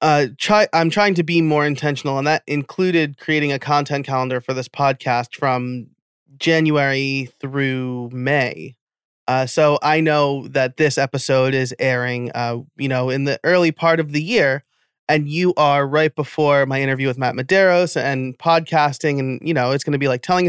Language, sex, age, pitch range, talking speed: English, male, 30-49, 130-160 Hz, 180 wpm